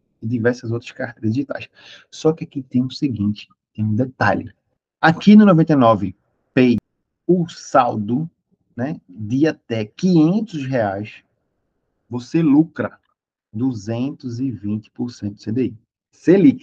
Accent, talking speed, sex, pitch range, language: Brazilian, 110 wpm, male, 120-165 Hz, Portuguese